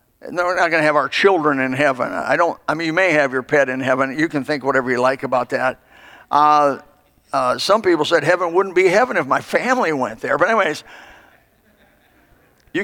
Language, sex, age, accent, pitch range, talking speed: English, male, 60-79, American, 140-215 Hz, 215 wpm